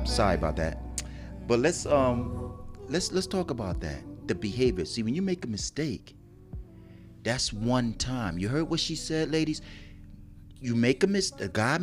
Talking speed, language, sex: 165 wpm, English, male